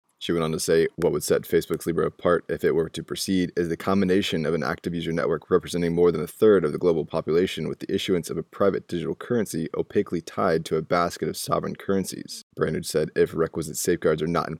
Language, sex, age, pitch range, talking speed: English, male, 20-39, 85-95 Hz, 235 wpm